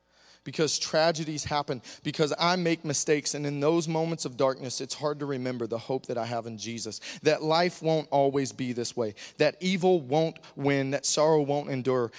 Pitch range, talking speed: 120-160 Hz, 190 wpm